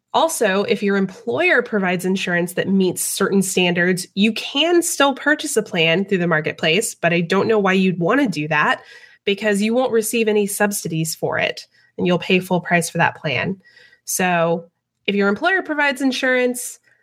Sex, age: female, 20-39